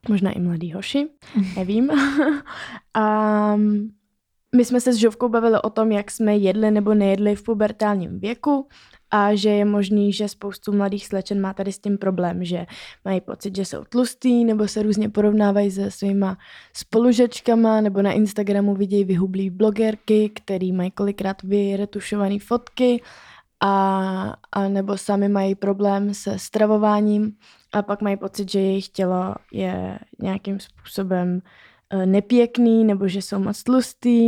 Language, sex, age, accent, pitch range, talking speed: Czech, female, 20-39, native, 195-225 Hz, 145 wpm